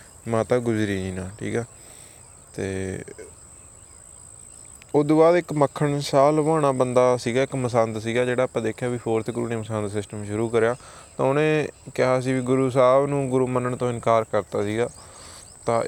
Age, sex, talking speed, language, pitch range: 20-39, male, 165 wpm, Punjabi, 115-140 Hz